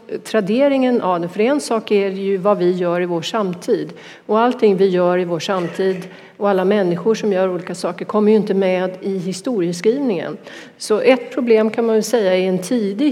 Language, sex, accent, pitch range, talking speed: Swedish, female, native, 180-215 Hz, 190 wpm